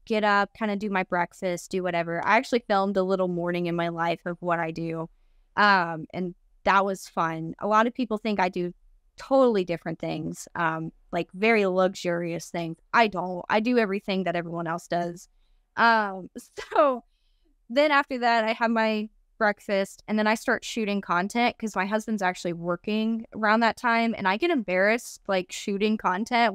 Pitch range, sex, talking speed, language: 180-235 Hz, female, 185 wpm, English